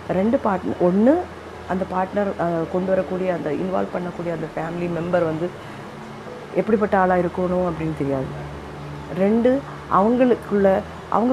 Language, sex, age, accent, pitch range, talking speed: Tamil, female, 30-49, native, 170-210 Hz, 110 wpm